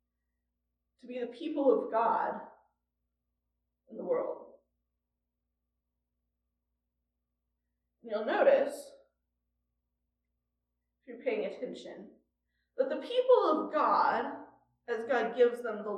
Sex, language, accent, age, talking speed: female, English, American, 20-39, 90 wpm